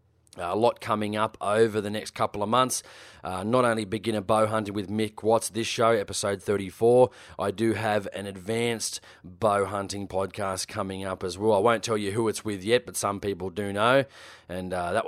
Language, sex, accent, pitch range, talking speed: English, male, Australian, 95-110 Hz, 205 wpm